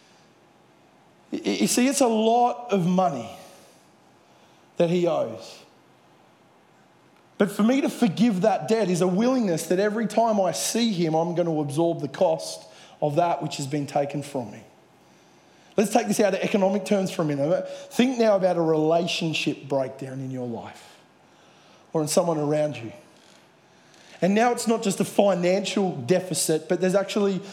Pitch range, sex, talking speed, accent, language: 165-215 Hz, male, 165 wpm, Australian, English